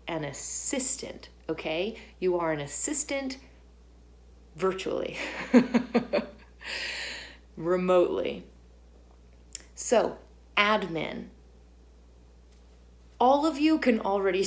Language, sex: English, female